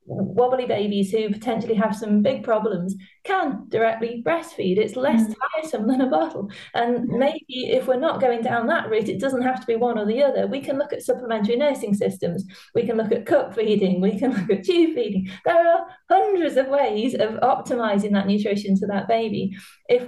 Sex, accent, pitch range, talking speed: female, British, 205-255 Hz, 200 wpm